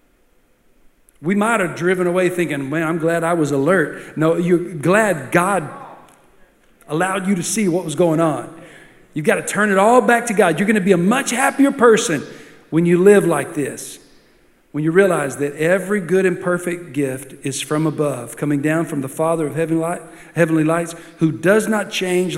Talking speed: 195 wpm